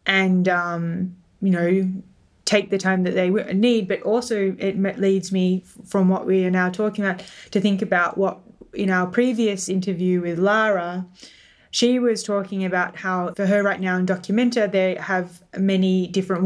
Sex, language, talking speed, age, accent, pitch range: female, English, 170 wpm, 10-29, Australian, 180-200 Hz